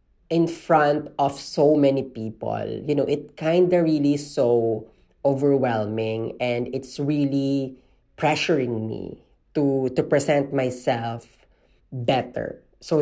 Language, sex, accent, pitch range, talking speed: Filipino, female, native, 125-145 Hz, 115 wpm